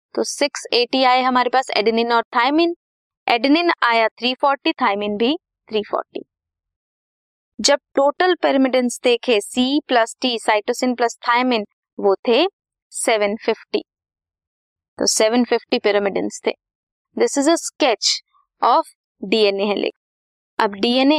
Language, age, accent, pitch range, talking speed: Hindi, 20-39, native, 210-280 Hz, 110 wpm